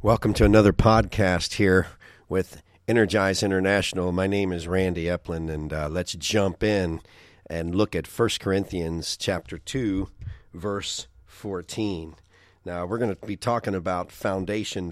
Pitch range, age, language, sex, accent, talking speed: 90-110 Hz, 40-59, English, male, American, 140 wpm